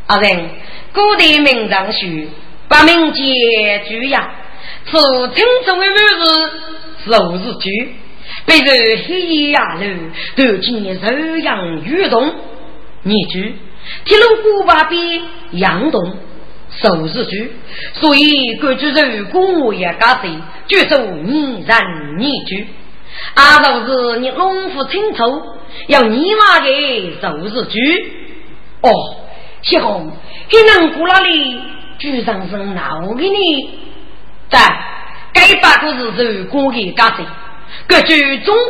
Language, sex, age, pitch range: Chinese, female, 40-59, 225-330 Hz